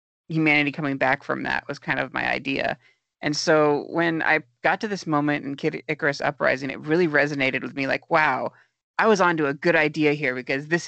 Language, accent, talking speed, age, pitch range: English, American, 210 wpm, 30-49, 135-155 Hz